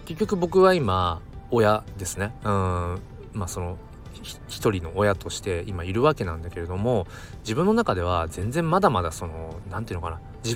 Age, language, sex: 20-39, Japanese, male